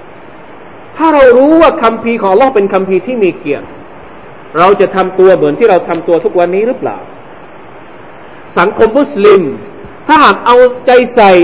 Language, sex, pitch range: Thai, male, 185-275 Hz